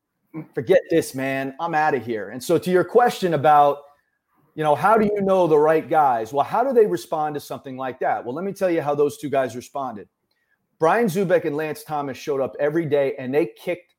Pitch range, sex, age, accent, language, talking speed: 135-175 Hz, male, 30-49, American, English, 225 wpm